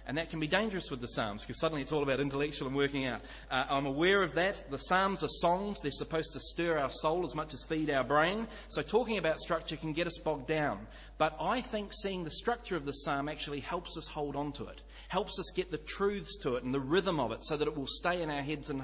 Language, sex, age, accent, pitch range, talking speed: English, male, 30-49, Australian, 145-195 Hz, 270 wpm